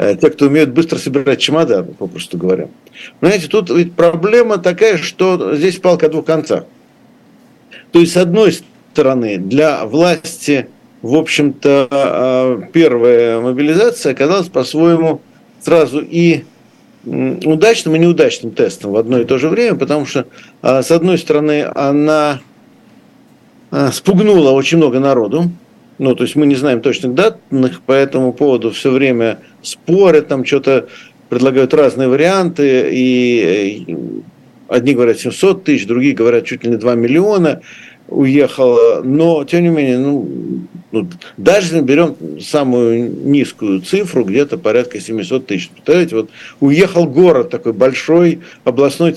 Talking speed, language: 130 wpm, Russian